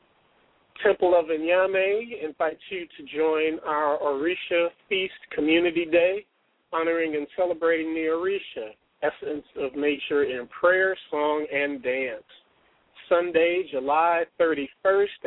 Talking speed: 110 wpm